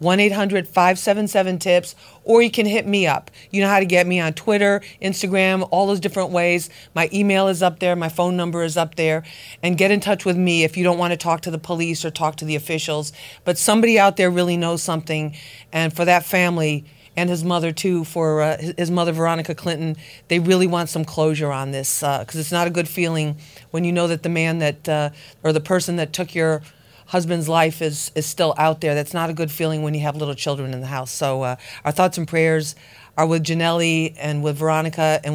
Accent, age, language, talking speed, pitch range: American, 40-59, English, 225 wpm, 155-195 Hz